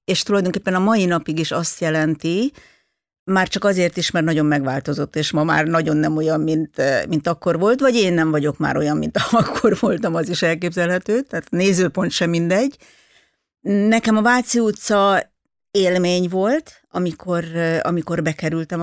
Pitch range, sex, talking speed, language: 155-185 Hz, female, 160 wpm, Hungarian